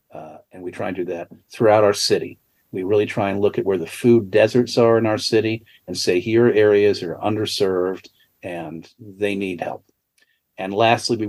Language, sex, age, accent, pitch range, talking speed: English, male, 50-69, American, 90-115 Hz, 195 wpm